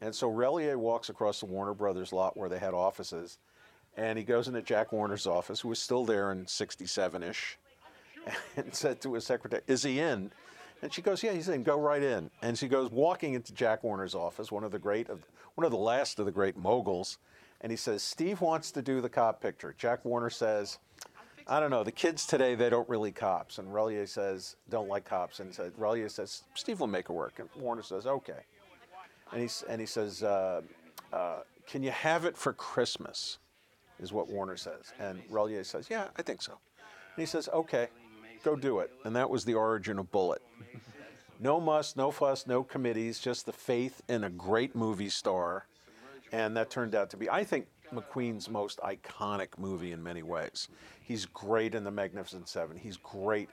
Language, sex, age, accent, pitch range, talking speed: English, male, 50-69, American, 100-125 Hz, 200 wpm